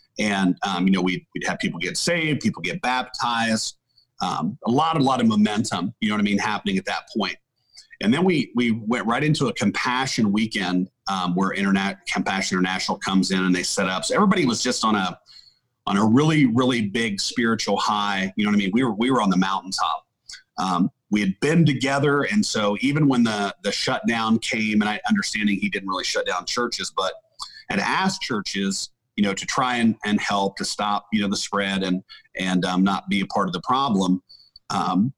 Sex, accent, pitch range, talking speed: male, American, 100-145 Hz, 215 wpm